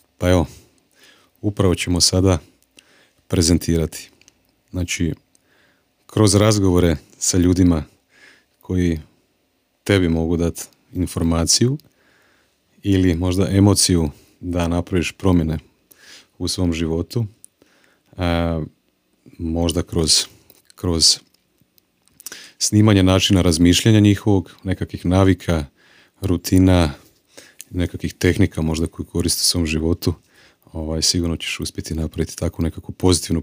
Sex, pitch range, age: male, 85-95 Hz, 40-59